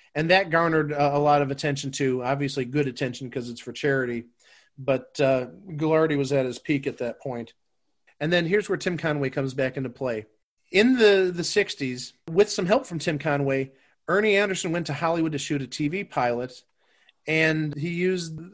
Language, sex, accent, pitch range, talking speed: English, male, American, 140-185 Hz, 190 wpm